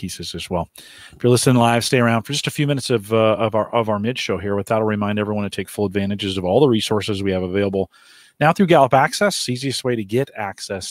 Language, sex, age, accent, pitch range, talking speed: English, male, 40-59, American, 105-140 Hz, 260 wpm